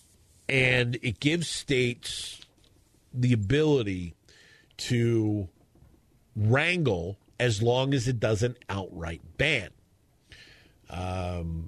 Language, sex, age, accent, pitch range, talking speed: English, male, 50-69, American, 100-130 Hz, 80 wpm